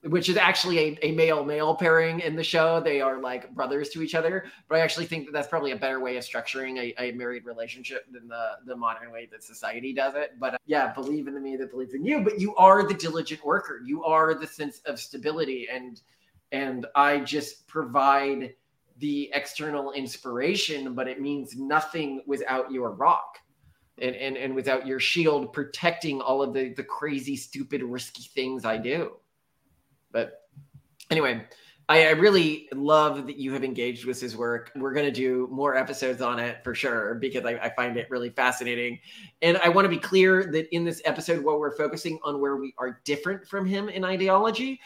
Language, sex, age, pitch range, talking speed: English, male, 20-39, 125-160 Hz, 200 wpm